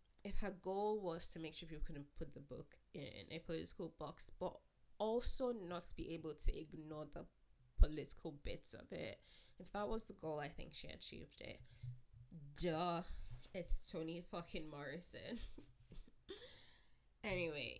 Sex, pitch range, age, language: female, 145-190 Hz, 20-39, English